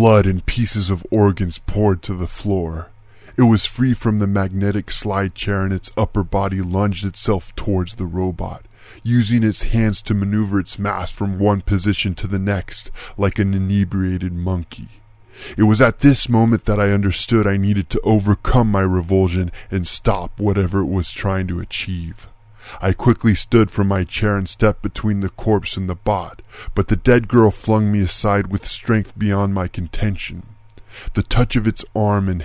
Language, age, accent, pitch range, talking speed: English, 20-39, American, 95-105 Hz, 180 wpm